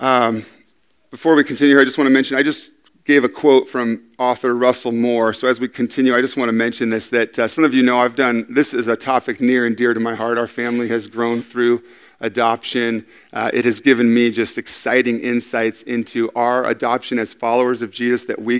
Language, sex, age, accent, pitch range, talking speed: English, male, 40-59, American, 115-130 Hz, 225 wpm